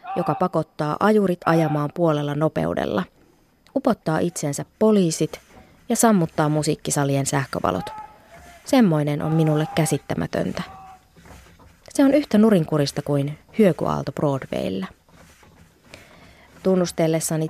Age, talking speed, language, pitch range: 20-39, 85 wpm, Finnish, 145-195 Hz